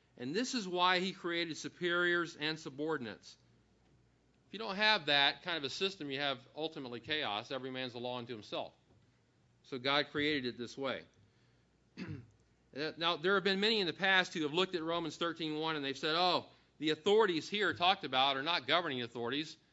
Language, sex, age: English, male, 40-59